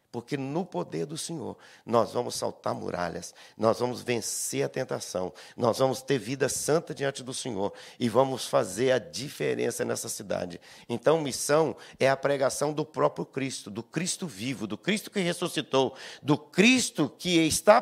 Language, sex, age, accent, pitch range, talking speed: Portuguese, male, 50-69, Brazilian, 130-170 Hz, 160 wpm